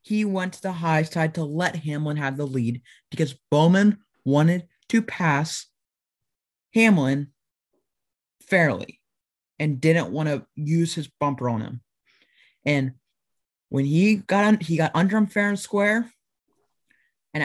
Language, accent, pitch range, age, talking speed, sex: English, American, 135-180 Hz, 30-49, 135 wpm, male